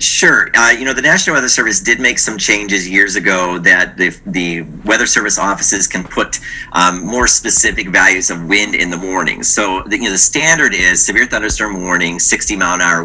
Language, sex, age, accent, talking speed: English, male, 50-69, American, 205 wpm